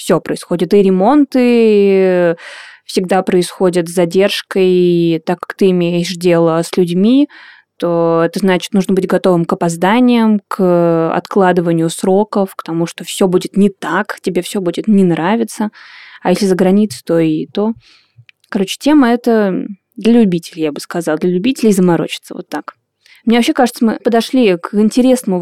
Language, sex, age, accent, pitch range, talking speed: Russian, female, 20-39, native, 180-225 Hz, 155 wpm